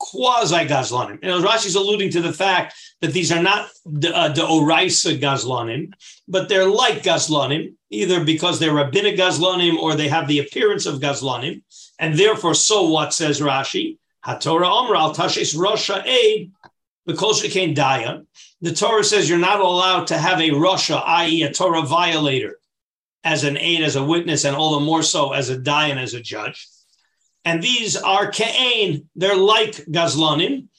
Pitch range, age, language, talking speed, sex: 155-195 Hz, 50-69, English, 155 wpm, male